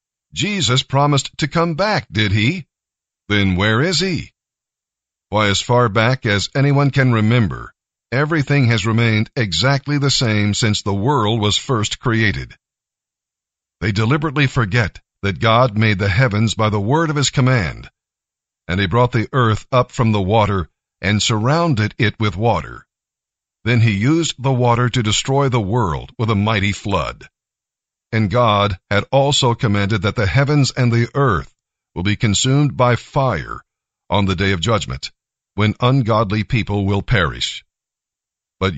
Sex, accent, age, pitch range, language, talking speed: male, American, 50-69, 100-130 Hz, English, 155 wpm